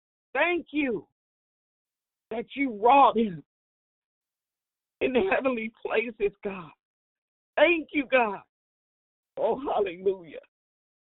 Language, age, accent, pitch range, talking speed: English, 50-69, American, 235-310 Hz, 90 wpm